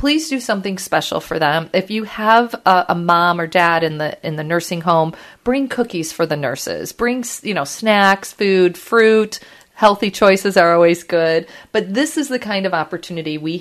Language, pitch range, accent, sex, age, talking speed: English, 170-215 Hz, American, female, 40-59, 195 wpm